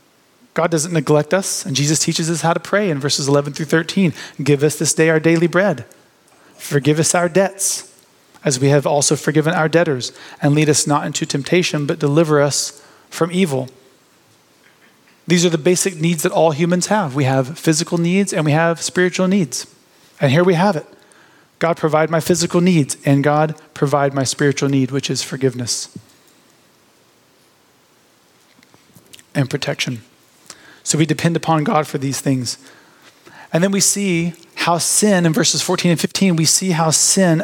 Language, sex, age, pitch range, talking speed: English, male, 30-49, 145-175 Hz, 170 wpm